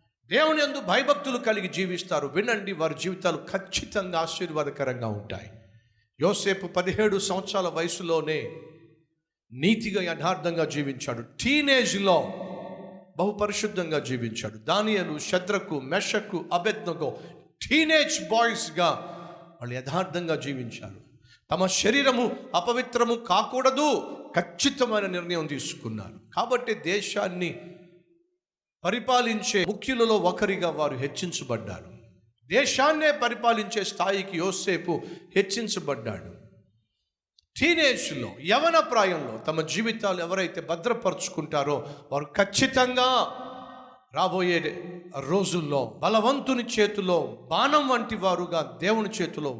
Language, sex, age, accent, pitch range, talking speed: Telugu, male, 50-69, native, 160-220 Hz, 80 wpm